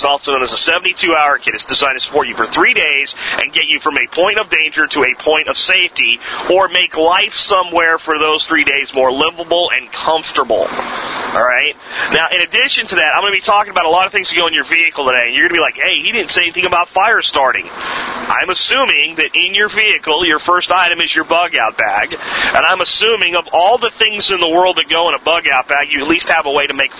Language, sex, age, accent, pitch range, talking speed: English, male, 40-59, American, 155-200 Hz, 250 wpm